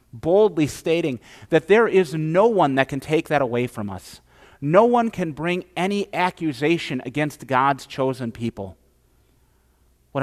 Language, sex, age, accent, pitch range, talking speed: English, male, 40-59, American, 115-170 Hz, 145 wpm